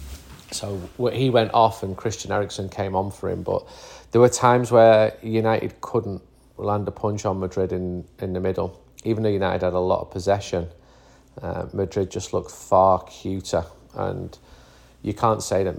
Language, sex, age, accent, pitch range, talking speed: English, male, 40-59, British, 90-110 Hz, 175 wpm